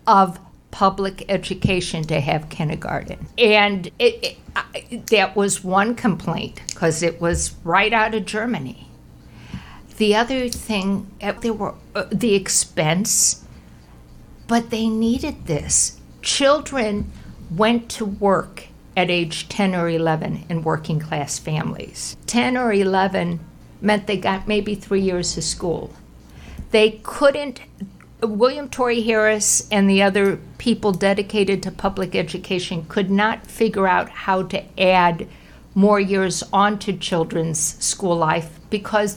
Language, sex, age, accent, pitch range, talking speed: English, female, 60-79, American, 170-215 Hz, 130 wpm